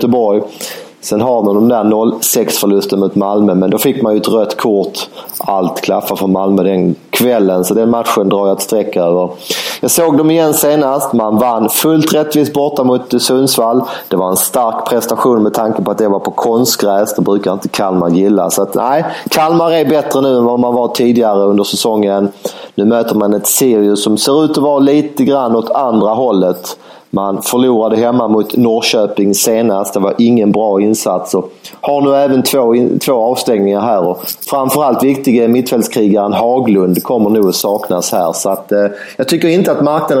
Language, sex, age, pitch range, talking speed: English, male, 30-49, 100-130 Hz, 185 wpm